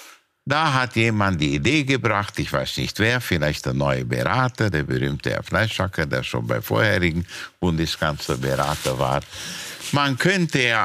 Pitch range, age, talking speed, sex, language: 75-115 Hz, 60-79, 150 wpm, male, German